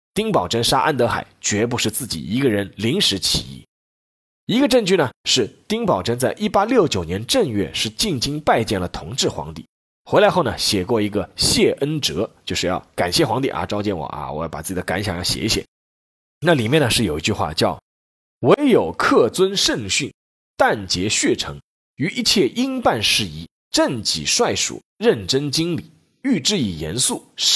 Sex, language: male, Chinese